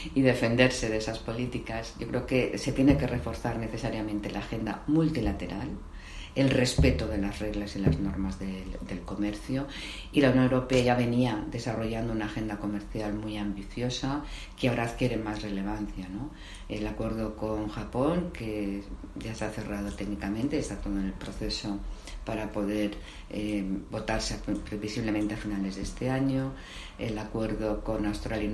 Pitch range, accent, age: 100-115 Hz, Spanish, 40-59